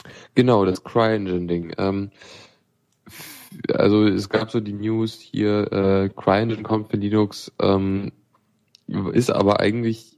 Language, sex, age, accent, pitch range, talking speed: German, male, 10-29, German, 95-110 Hz, 120 wpm